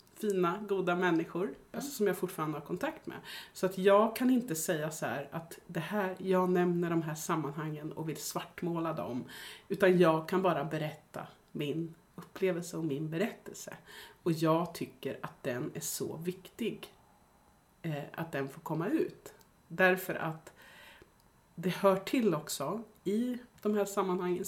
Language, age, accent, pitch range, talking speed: Swedish, 30-49, native, 160-190 Hz, 145 wpm